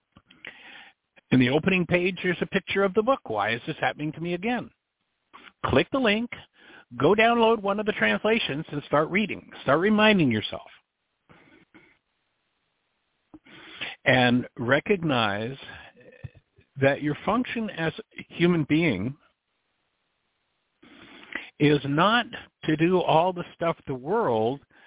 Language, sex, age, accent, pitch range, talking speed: English, male, 60-79, American, 125-180 Hz, 120 wpm